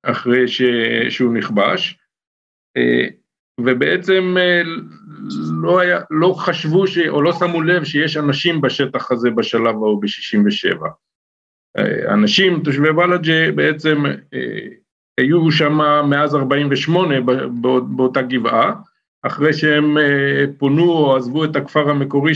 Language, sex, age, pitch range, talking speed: Hebrew, male, 50-69, 130-170 Hz, 105 wpm